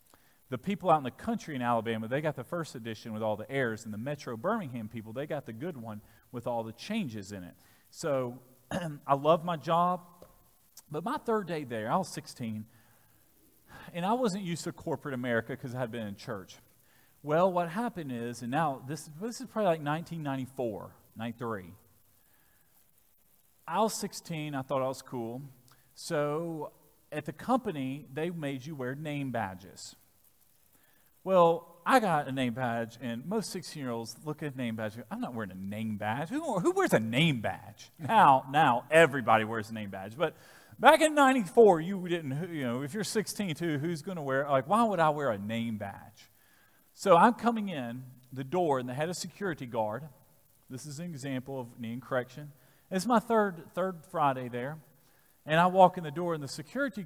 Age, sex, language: 40-59, male, English